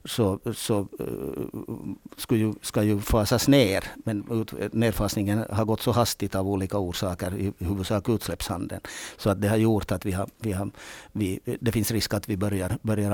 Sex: male